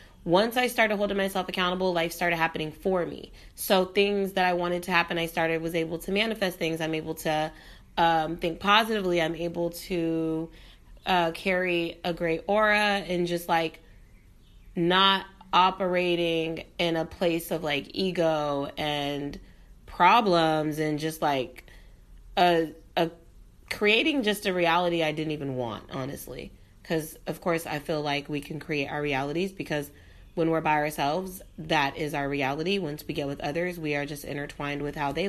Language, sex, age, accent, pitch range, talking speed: English, female, 30-49, American, 150-175 Hz, 165 wpm